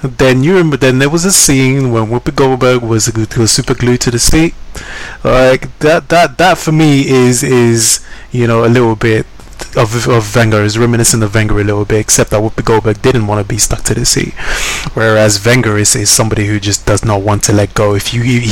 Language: English